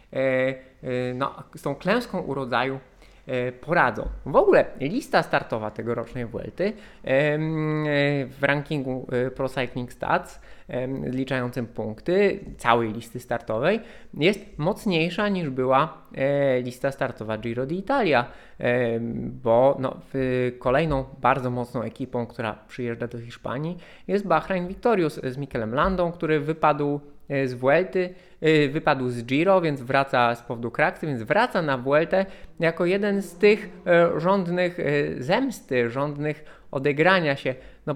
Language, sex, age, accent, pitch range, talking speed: Polish, male, 20-39, native, 125-160 Hz, 115 wpm